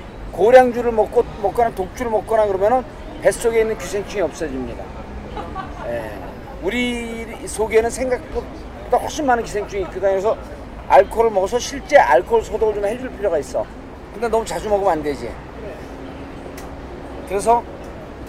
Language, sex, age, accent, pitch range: Korean, male, 40-59, native, 165-225 Hz